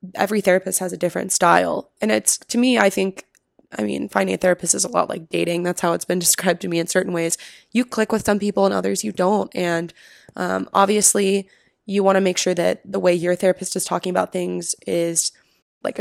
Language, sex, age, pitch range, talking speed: English, female, 20-39, 180-205 Hz, 225 wpm